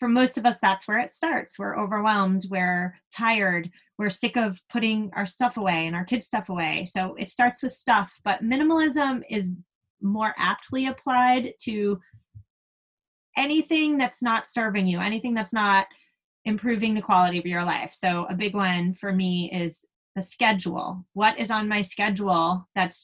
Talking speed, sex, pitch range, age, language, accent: 170 wpm, female, 185-245 Hz, 20-39, English, American